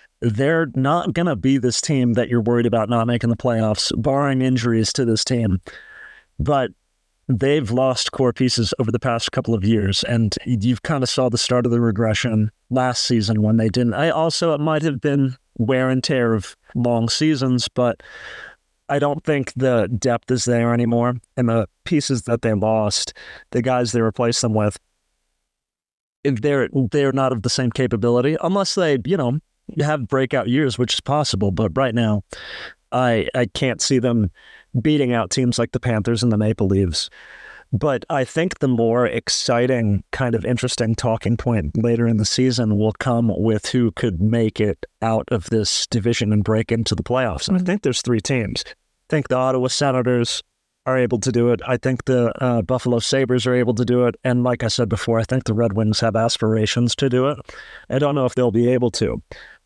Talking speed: 195 wpm